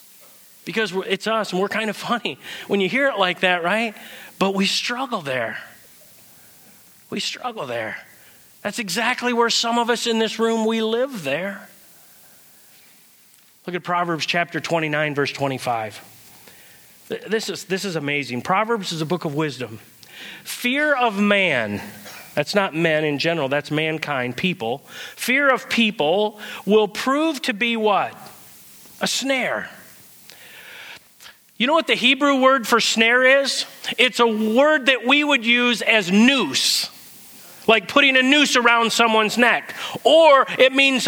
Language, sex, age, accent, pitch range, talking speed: English, male, 30-49, American, 195-255 Hz, 150 wpm